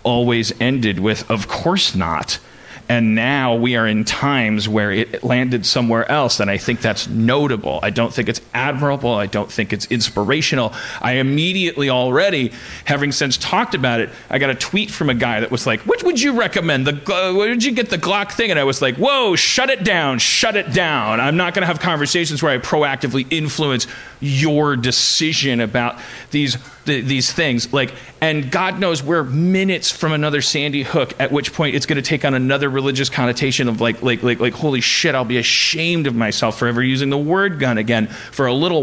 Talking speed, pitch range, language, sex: 205 wpm, 120-155 Hz, English, male